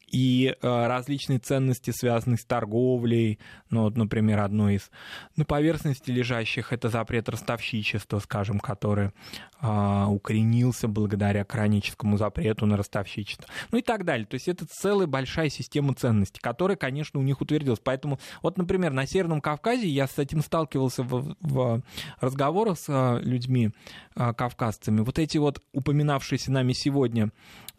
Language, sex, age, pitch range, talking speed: Russian, male, 20-39, 110-140 Hz, 140 wpm